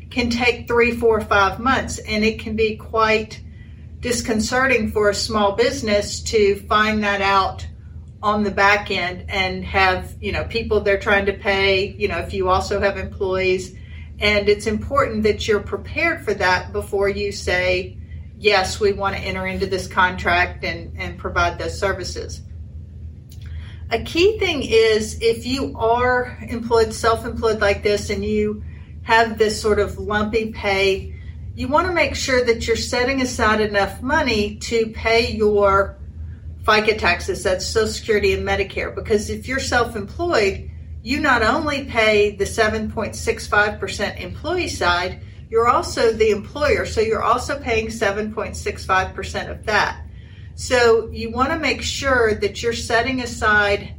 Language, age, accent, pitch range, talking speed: English, 40-59, American, 185-235 Hz, 150 wpm